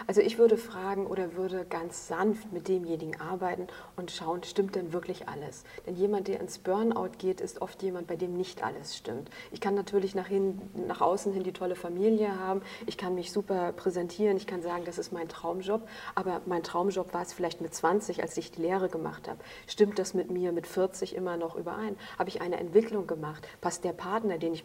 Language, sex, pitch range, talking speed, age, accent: German, female, 170-190 Hz, 210 wpm, 40-59, German